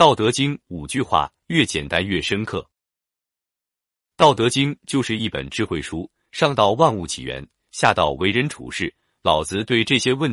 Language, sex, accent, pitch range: Chinese, male, native, 85-140 Hz